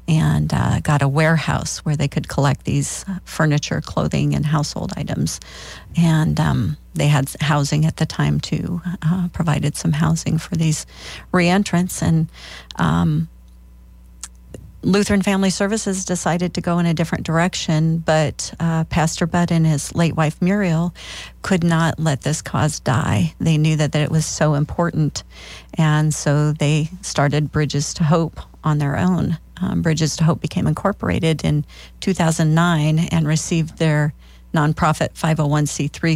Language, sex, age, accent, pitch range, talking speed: English, female, 40-59, American, 145-165 Hz, 150 wpm